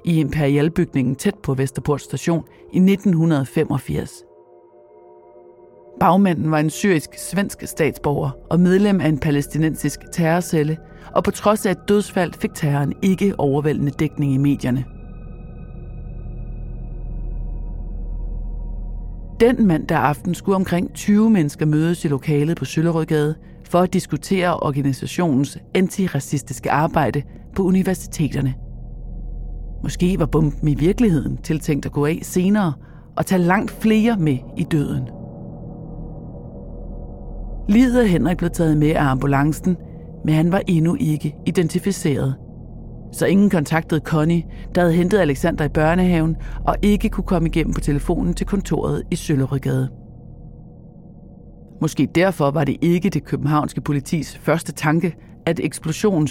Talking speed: 125 wpm